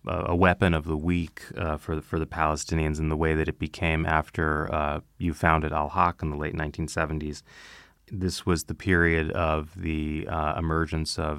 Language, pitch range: English, 75-90 Hz